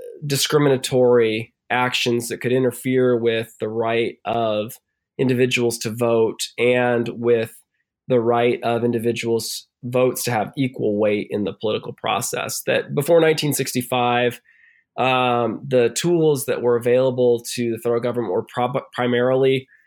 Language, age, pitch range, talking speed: English, 20-39, 115-130 Hz, 130 wpm